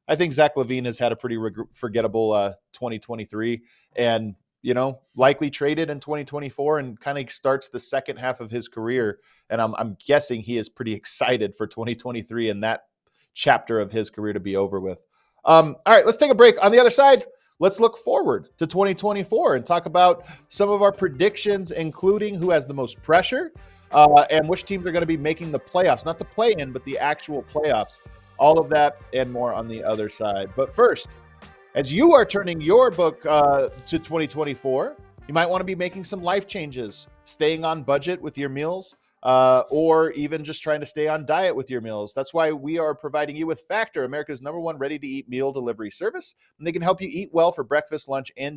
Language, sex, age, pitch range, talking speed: English, male, 30-49, 120-170 Hz, 210 wpm